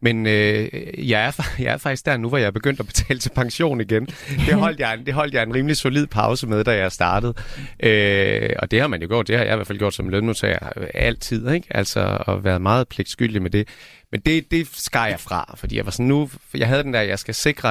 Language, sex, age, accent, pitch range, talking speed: Danish, male, 30-49, native, 105-135 Hz, 255 wpm